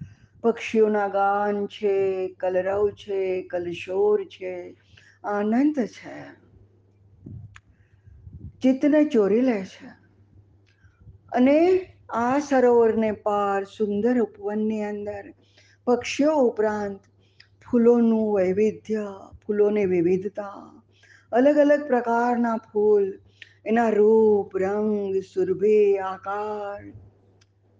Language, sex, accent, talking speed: Gujarati, female, native, 40 wpm